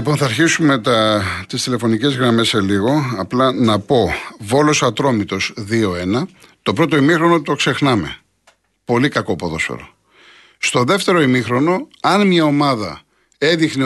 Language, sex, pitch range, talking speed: Greek, male, 110-165 Hz, 125 wpm